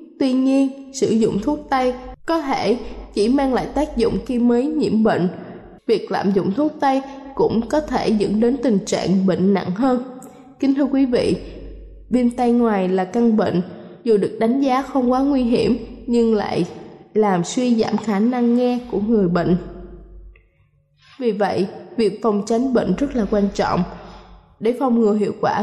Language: Vietnamese